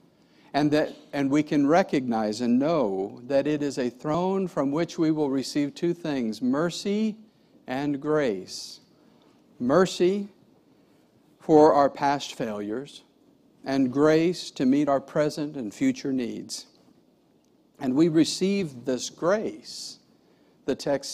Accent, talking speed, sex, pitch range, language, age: American, 125 wpm, male, 135-180 Hz, English, 50-69